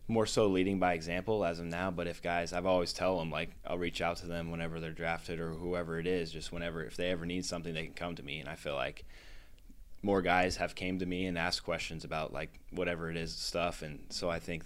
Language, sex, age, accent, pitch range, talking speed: English, male, 20-39, American, 80-90 Hz, 260 wpm